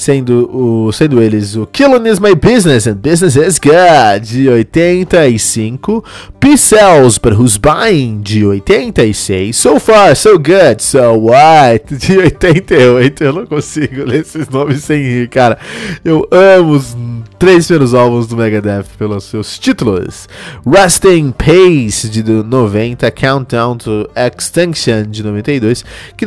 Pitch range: 110-155 Hz